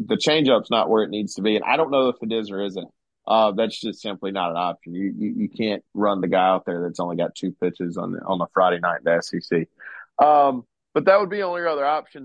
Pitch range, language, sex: 100-125 Hz, English, male